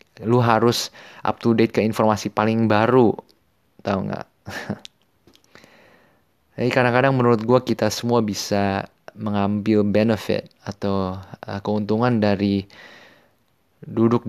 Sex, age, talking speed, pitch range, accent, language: male, 20-39, 100 wpm, 100-115 Hz, native, Indonesian